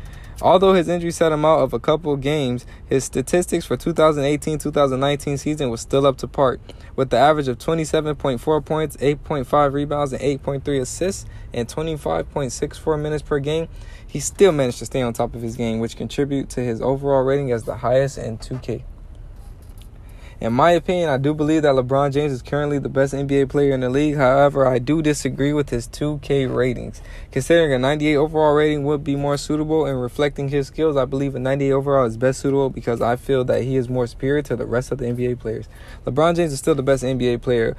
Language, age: English, 20-39